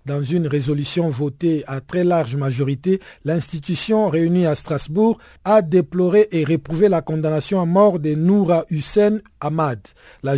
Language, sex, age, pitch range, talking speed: French, male, 50-69, 145-180 Hz, 145 wpm